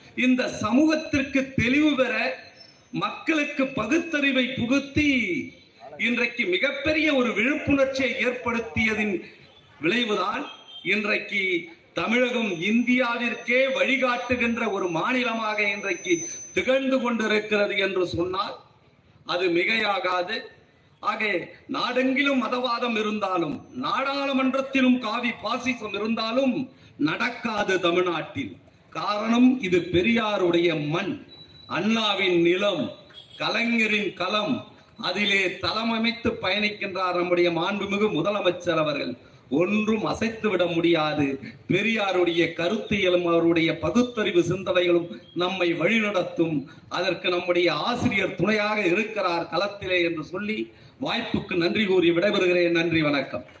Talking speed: 85 wpm